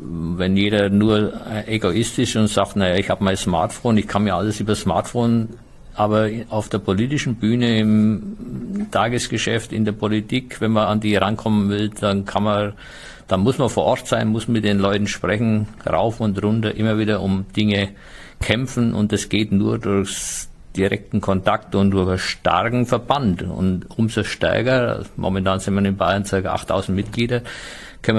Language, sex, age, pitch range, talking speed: German, male, 50-69, 95-110 Hz, 170 wpm